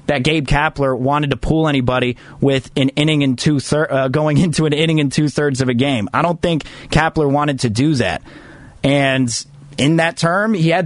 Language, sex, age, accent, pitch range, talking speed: English, male, 20-39, American, 140-180 Hz, 220 wpm